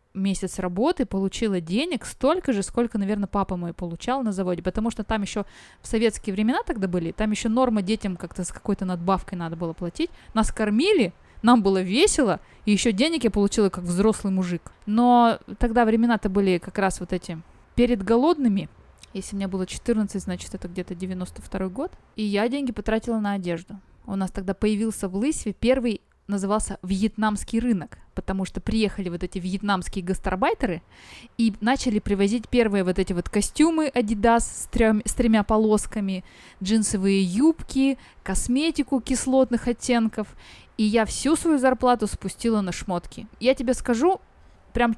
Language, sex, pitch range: Russian, female, 190-240 Hz